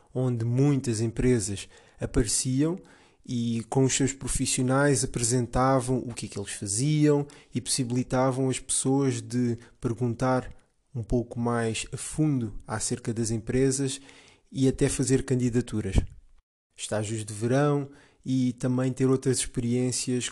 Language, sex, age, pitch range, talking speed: Portuguese, male, 20-39, 115-130 Hz, 125 wpm